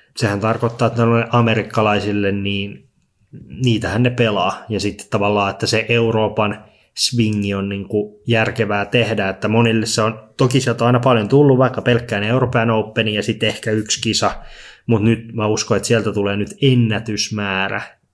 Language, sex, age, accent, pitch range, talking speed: Finnish, male, 20-39, native, 105-115 Hz, 155 wpm